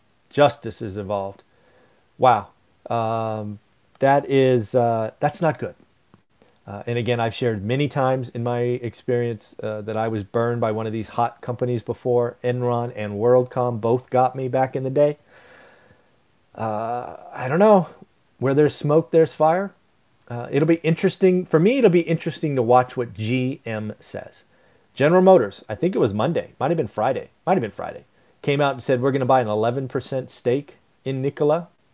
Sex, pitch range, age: male, 120-160 Hz, 40-59